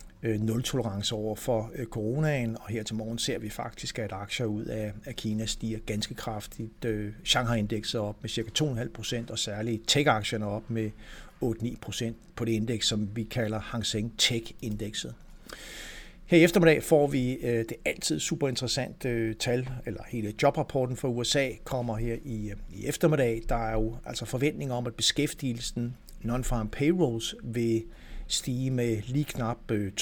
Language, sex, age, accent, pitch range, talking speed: Danish, male, 60-79, native, 110-125 Hz, 150 wpm